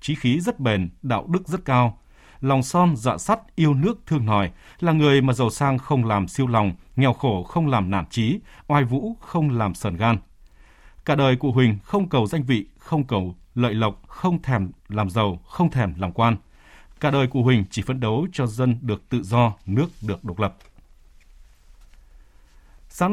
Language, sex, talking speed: Vietnamese, male, 190 wpm